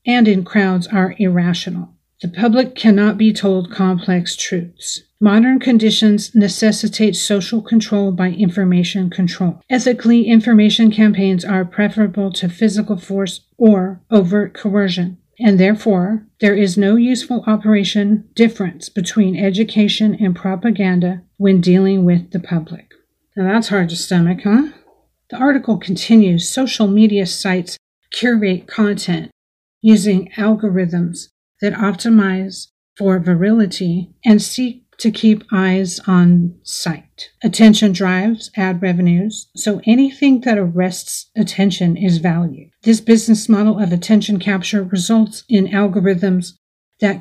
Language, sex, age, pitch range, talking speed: English, female, 40-59, 185-215 Hz, 120 wpm